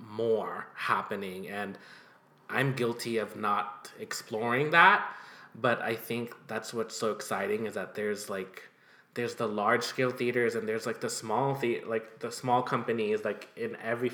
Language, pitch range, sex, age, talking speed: English, 100-125 Hz, male, 20-39, 160 wpm